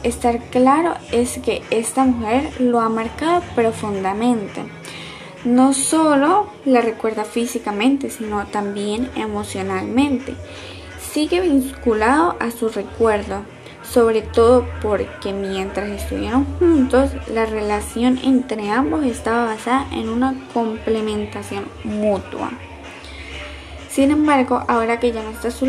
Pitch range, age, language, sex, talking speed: 210-260 Hz, 10-29, Spanish, female, 110 wpm